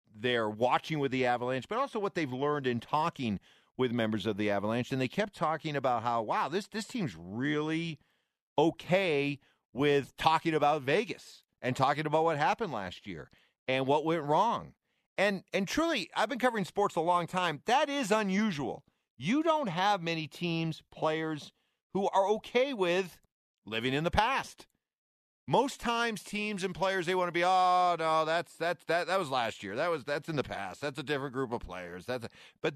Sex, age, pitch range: male, 40-59, 130-185 Hz